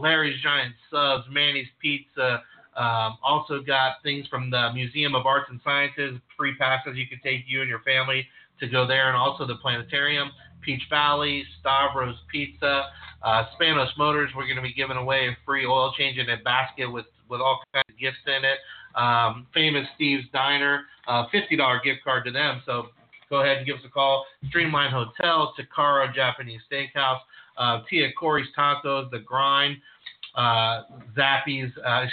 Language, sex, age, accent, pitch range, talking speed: English, male, 40-59, American, 120-140 Hz, 170 wpm